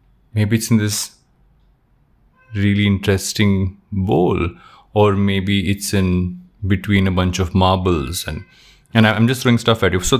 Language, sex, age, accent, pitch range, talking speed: English, male, 30-49, Indian, 95-125 Hz, 145 wpm